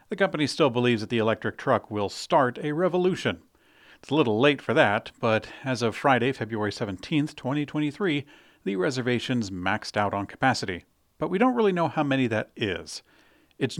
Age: 40-59